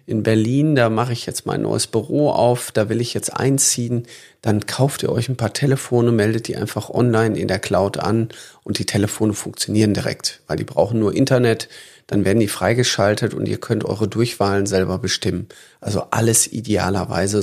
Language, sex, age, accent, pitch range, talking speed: German, male, 40-59, German, 105-120 Hz, 185 wpm